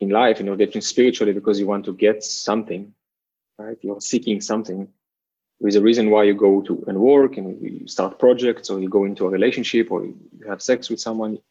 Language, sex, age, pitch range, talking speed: English, male, 20-39, 100-115 Hz, 220 wpm